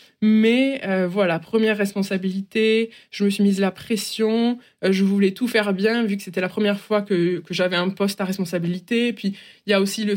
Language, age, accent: French, 20-39, French